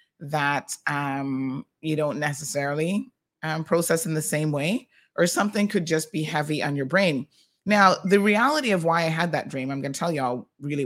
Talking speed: 190 wpm